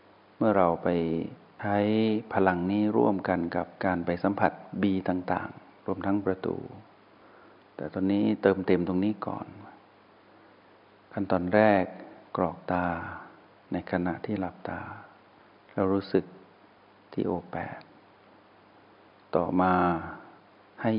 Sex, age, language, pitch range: male, 60-79, Thai, 90-105 Hz